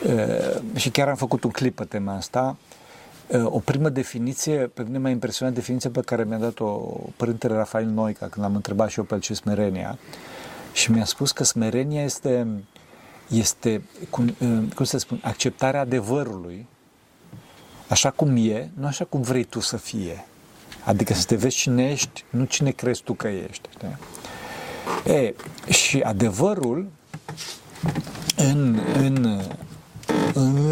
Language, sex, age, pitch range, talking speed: Romanian, male, 50-69, 115-145 Hz, 150 wpm